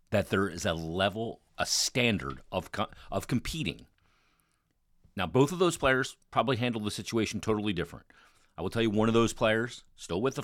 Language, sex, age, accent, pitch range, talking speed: English, male, 40-59, American, 90-115 Hz, 185 wpm